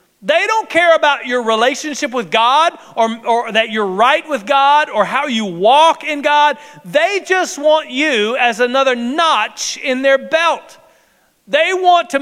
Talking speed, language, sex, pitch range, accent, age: 165 wpm, English, male, 255-325 Hz, American, 40-59